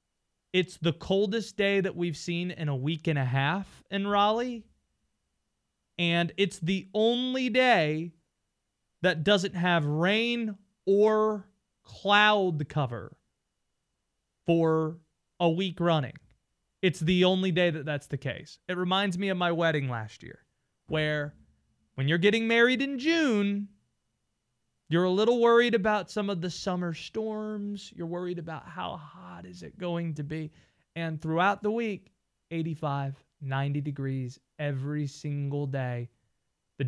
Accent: American